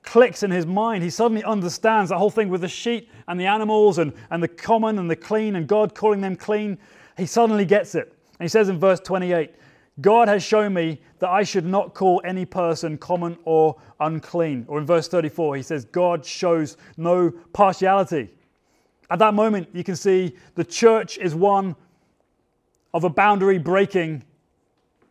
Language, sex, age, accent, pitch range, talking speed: English, male, 30-49, British, 170-210 Hz, 180 wpm